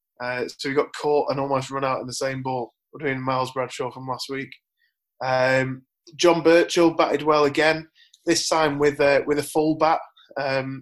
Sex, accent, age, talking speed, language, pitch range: male, British, 20-39, 185 wpm, English, 135-155 Hz